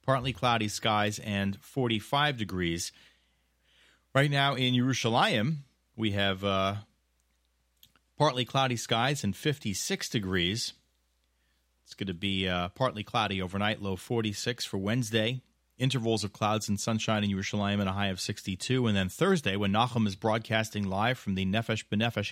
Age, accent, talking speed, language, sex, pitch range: 30-49, American, 150 wpm, English, male, 90-125 Hz